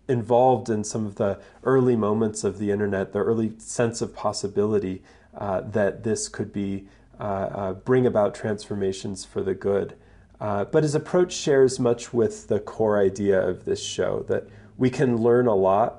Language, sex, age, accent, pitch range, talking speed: English, male, 30-49, American, 100-120 Hz, 175 wpm